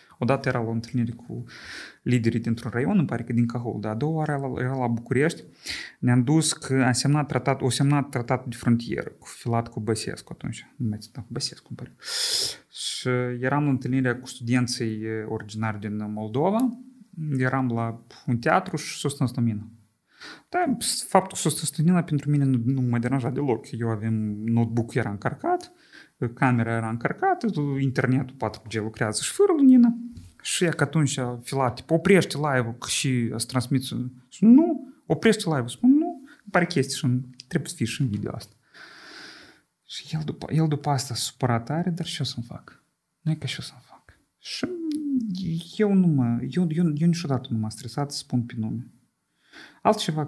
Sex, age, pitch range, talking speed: male, 30-49, 120-160 Hz, 170 wpm